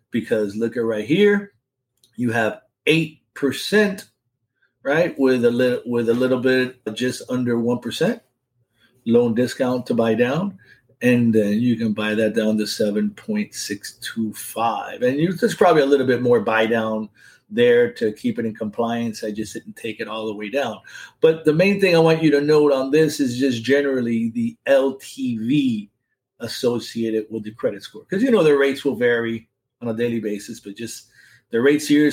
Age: 50-69